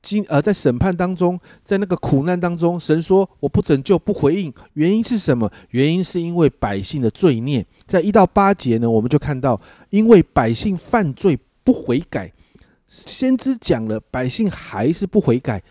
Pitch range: 120-190 Hz